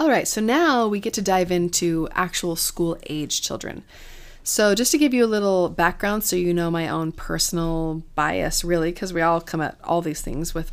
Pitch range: 165-200 Hz